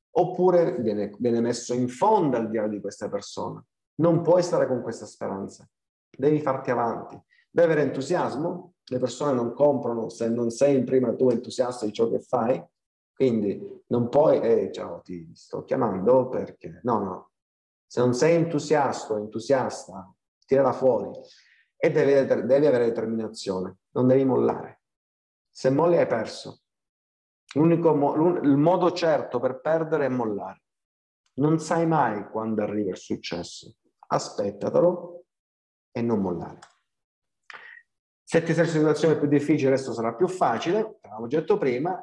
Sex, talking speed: male, 145 wpm